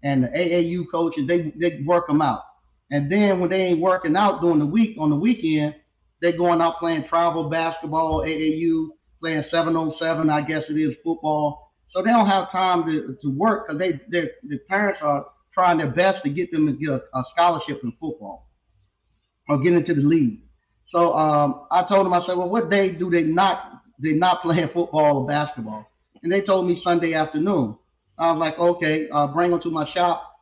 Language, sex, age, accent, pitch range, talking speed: English, male, 30-49, American, 145-175 Hz, 205 wpm